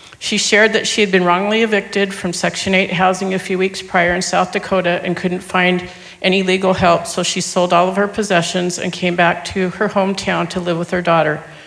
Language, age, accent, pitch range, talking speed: English, 50-69, American, 180-200 Hz, 220 wpm